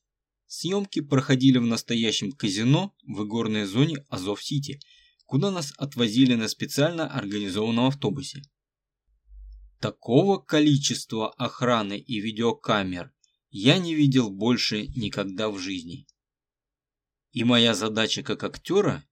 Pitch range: 110-140 Hz